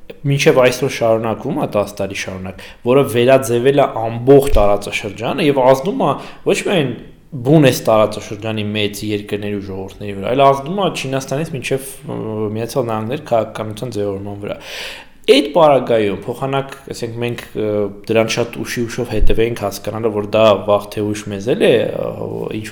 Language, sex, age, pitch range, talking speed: English, male, 20-39, 105-135 Hz, 85 wpm